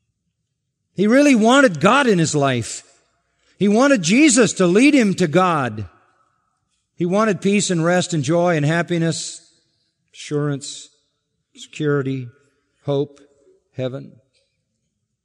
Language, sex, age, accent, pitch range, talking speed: English, male, 50-69, American, 120-170 Hz, 110 wpm